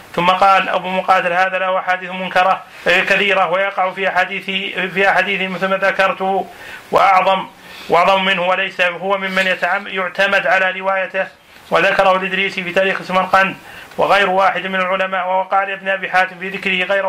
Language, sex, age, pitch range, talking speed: Arabic, male, 30-49, 185-195 Hz, 150 wpm